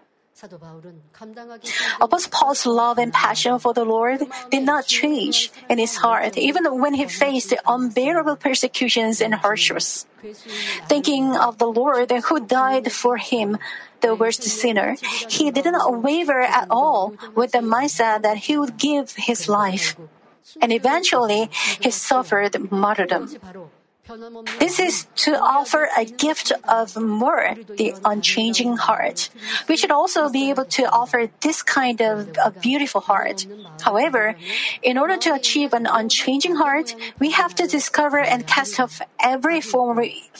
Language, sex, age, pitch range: Korean, female, 40-59, 225-290 Hz